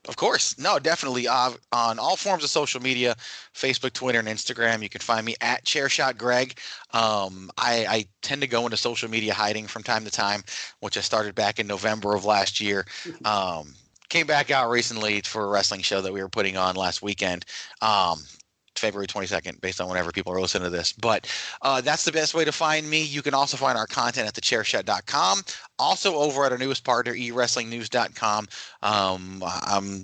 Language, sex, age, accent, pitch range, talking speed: English, male, 30-49, American, 100-130 Hz, 200 wpm